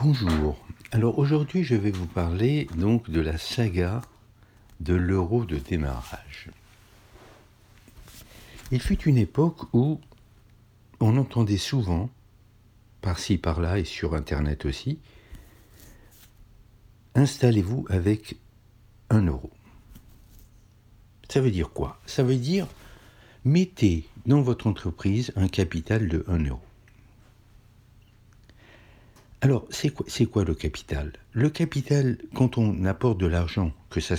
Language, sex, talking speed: French, male, 115 wpm